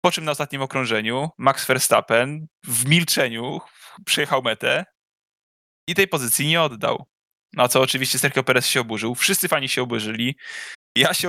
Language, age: Polish, 10-29